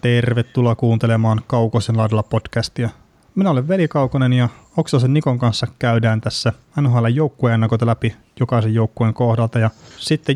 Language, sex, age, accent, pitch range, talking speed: Finnish, male, 30-49, native, 115-130 Hz, 135 wpm